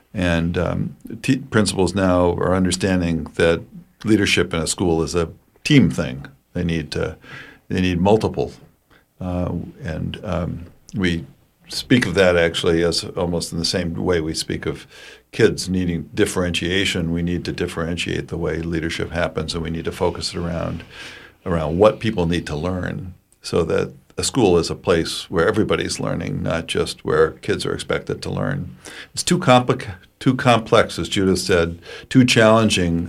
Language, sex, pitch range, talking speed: English, male, 85-100 Hz, 165 wpm